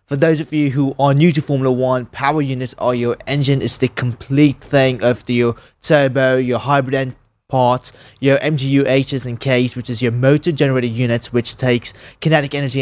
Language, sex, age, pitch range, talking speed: English, male, 20-39, 115-140 Hz, 190 wpm